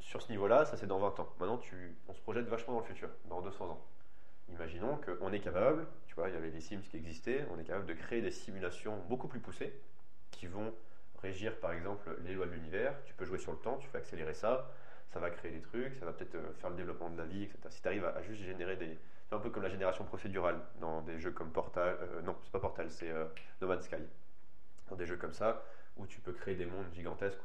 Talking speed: 260 wpm